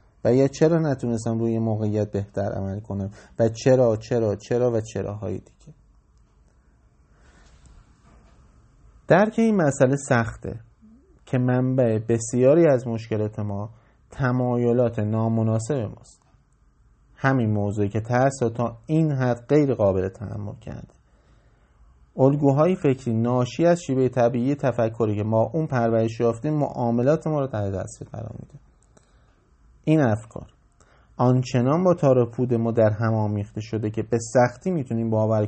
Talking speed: 120 wpm